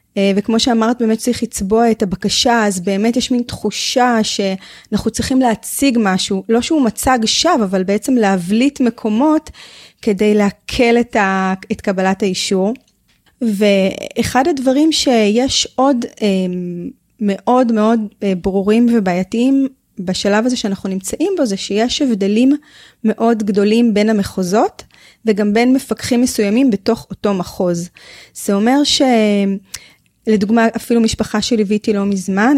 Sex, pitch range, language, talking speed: female, 200-250 Hz, Hebrew, 120 wpm